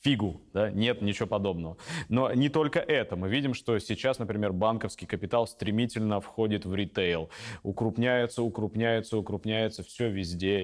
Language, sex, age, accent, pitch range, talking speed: Russian, male, 20-39, native, 100-130 Hz, 140 wpm